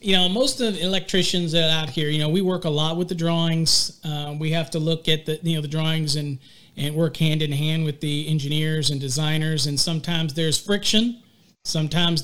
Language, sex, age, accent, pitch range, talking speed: English, male, 40-59, American, 150-175 Hz, 215 wpm